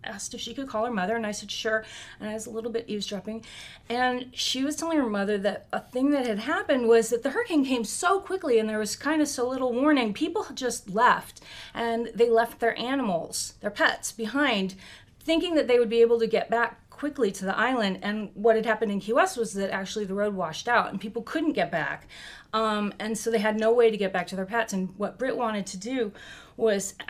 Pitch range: 195-235 Hz